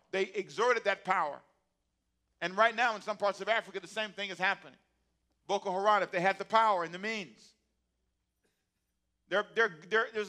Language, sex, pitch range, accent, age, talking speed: English, male, 125-200 Hz, American, 50-69, 170 wpm